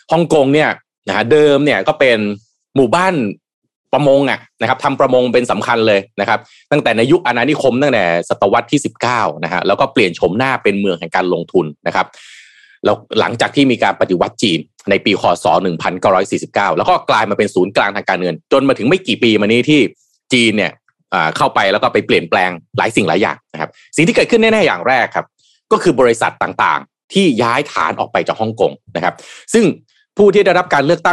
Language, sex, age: Thai, male, 30-49